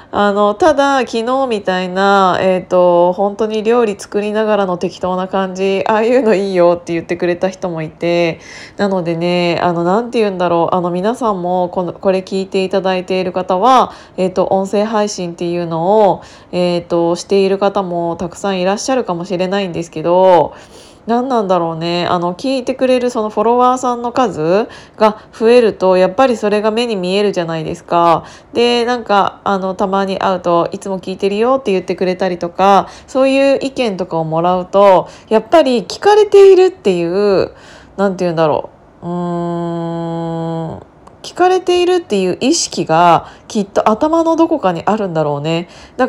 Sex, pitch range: female, 175-225 Hz